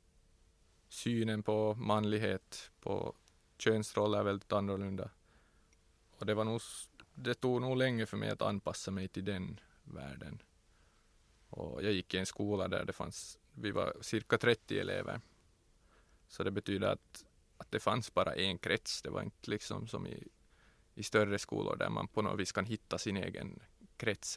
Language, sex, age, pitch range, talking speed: English, male, 20-39, 90-110 Hz, 155 wpm